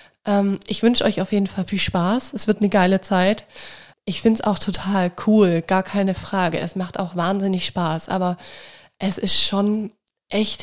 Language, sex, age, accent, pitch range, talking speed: German, female, 20-39, German, 180-215 Hz, 180 wpm